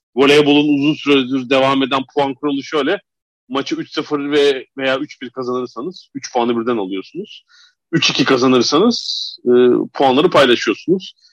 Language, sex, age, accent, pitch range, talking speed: Turkish, male, 40-59, native, 120-150 Hz, 115 wpm